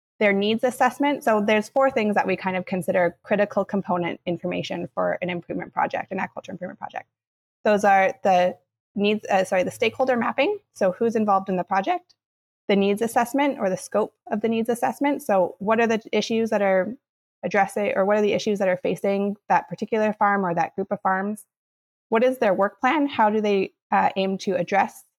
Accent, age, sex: American, 20-39, female